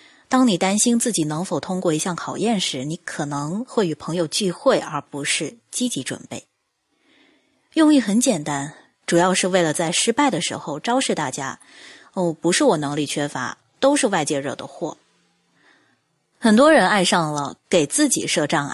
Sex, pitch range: female, 165-260 Hz